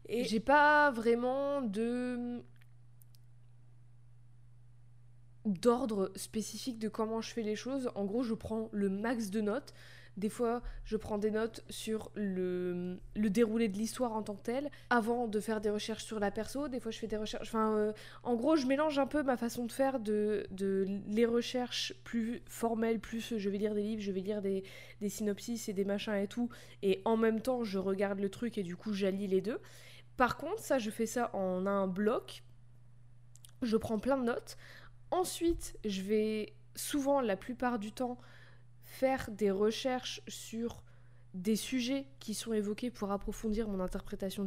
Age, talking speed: 20-39, 180 wpm